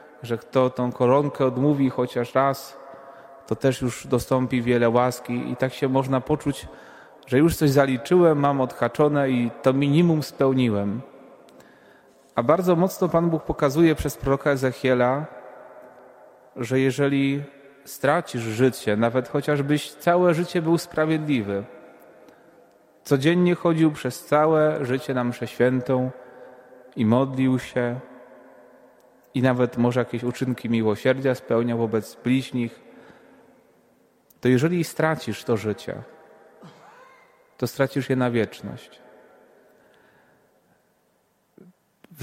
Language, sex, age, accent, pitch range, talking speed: Polish, male, 30-49, native, 125-145 Hz, 110 wpm